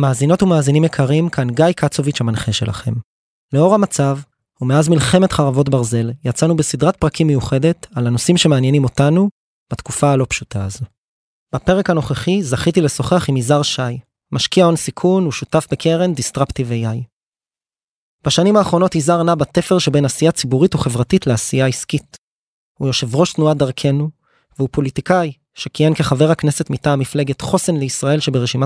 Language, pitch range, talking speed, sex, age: Hebrew, 135-165 Hz, 130 wpm, male, 20-39